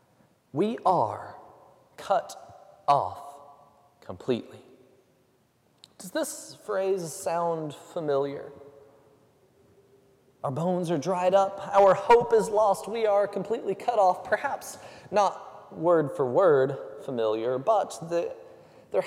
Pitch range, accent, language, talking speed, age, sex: 130-195 Hz, American, English, 100 wpm, 20-39, male